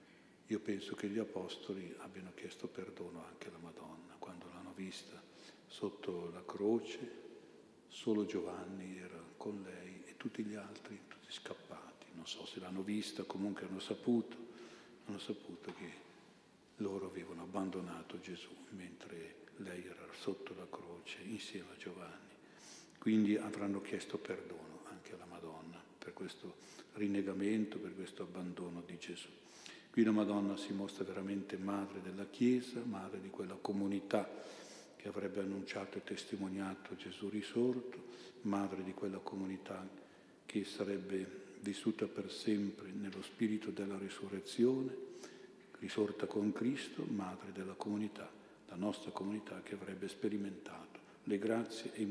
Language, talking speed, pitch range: Italian, 135 wpm, 95-105 Hz